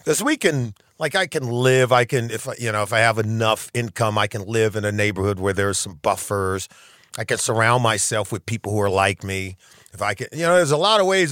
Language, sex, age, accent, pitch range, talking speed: English, male, 40-59, American, 105-135 Hz, 255 wpm